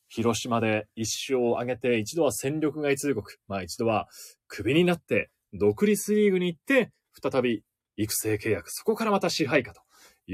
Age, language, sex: 20-39, Japanese, male